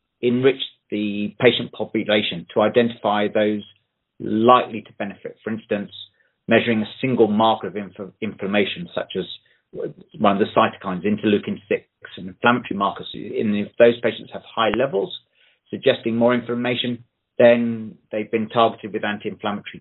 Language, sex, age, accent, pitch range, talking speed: English, male, 40-59, British, 110-135 Hz, 130 wpm